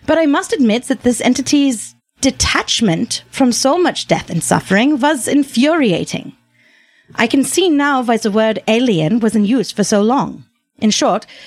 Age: 30-49